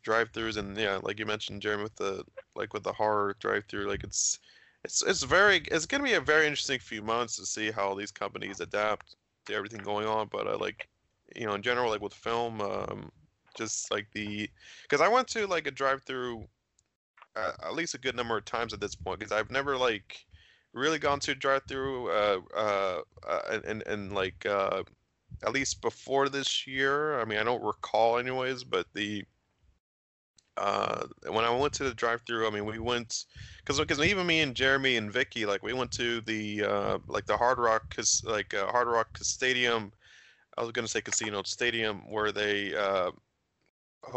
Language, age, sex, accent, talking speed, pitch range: English, 20-39, male, American, 195 wpm, 105-125 Hz